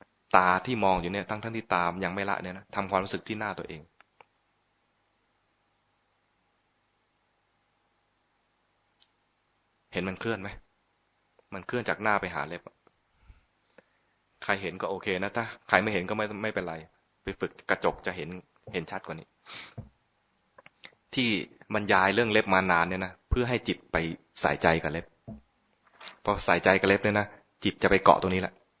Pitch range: 90-105 Hz